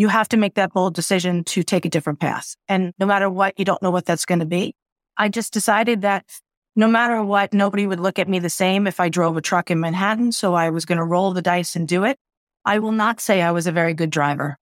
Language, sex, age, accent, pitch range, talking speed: English, female, 30-49, American, 175-210 Hz, 270 wpm